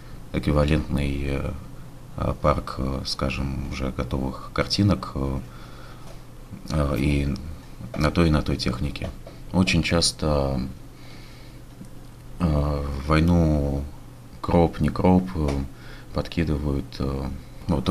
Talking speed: 80 wpm